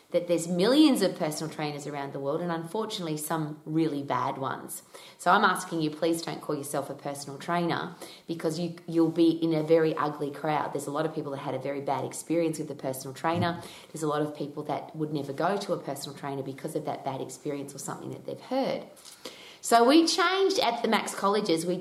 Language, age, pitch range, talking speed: English, 30-49, 150-195 Hz, 220 wpm